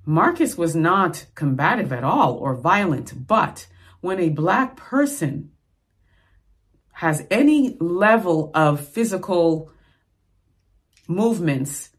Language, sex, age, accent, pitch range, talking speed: English, female, 30-49, American, 135-175 Hz, 95 wpm